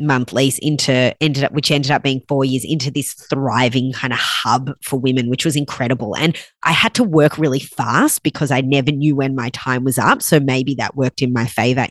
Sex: female